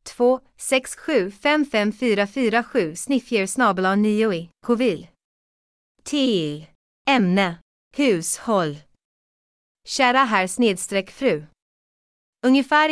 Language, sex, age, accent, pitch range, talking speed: Swedish, female, 30-49, native, 185-235 Hz, 70 wpm